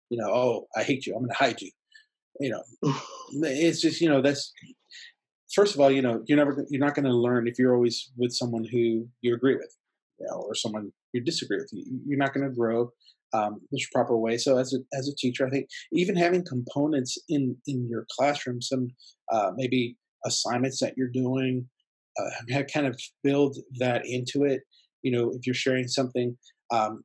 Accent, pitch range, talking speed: American, 120-140 Hz, 205 wpm